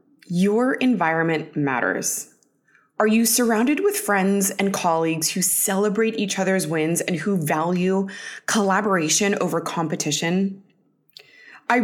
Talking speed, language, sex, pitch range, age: 110 wpm, English, female, 165-220 Hz, 20-39